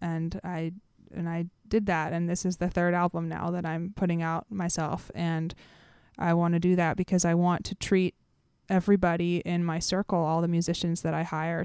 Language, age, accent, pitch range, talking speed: English, 20-39, American, 165-185 Hz, 200 wpm